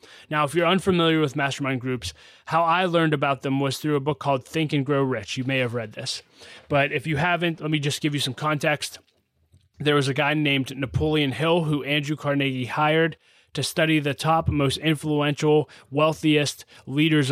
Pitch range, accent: 130-155 Hz, American